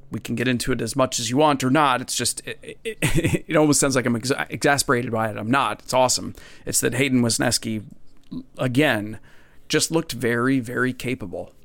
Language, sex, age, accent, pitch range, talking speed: English, male, 30-49, American, 120-140 Hz, 190 wpm